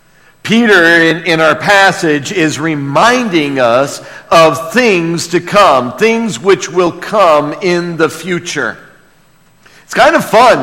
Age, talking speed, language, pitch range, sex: 50-69, 130 wpm, English, 120-190 Hz, male